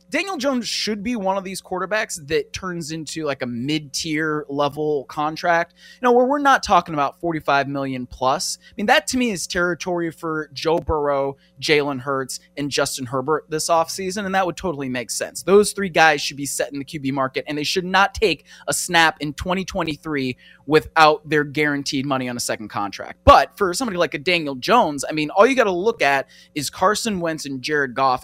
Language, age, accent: English, 20-39, American